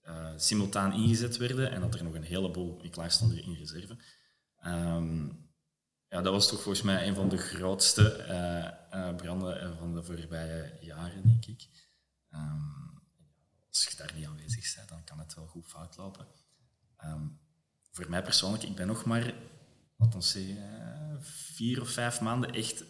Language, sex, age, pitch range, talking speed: Dutch, male, 20-39, 85-115 Hz, 165 wpm